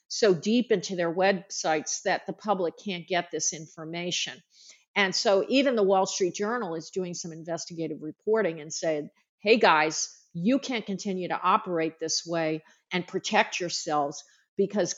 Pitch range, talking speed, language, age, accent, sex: 165-205 Hz, 155 wpm, English, 50-69, American, female